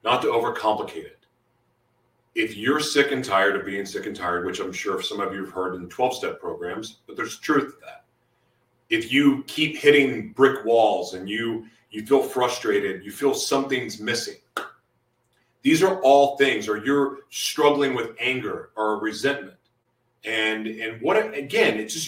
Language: English